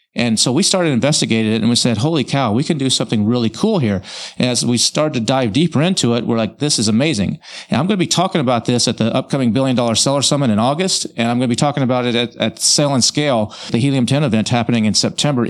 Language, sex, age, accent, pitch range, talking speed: English, male, 40-59, American, 115-150 Hz, 265 wpm